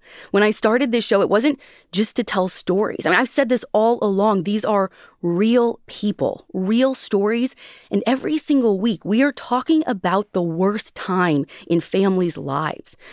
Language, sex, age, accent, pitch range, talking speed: English, female, 30-49, American, 180-240 Hz, 175 wpm